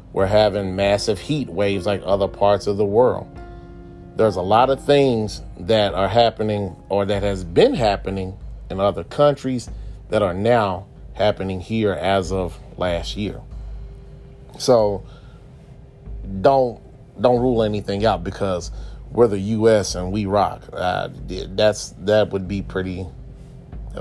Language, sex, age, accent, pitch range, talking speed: English, male, 30-49, American, 90-110 Hz, 140 wpm